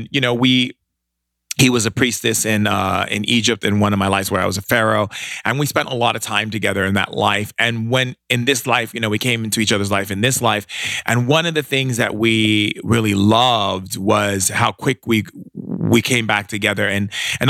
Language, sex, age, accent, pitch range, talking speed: English, male, 30-49, American, 100-125 Hz, 225 wpm